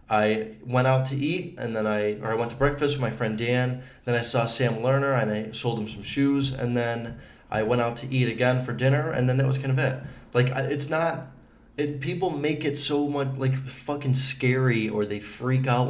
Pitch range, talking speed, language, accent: 110-140 Hz, 230 wpm, English, American